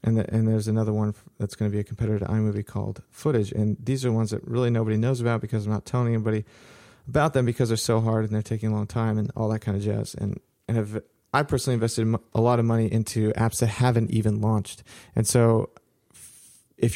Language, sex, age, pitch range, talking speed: English, male, 30-49, 105-120 Hz, 235 wpm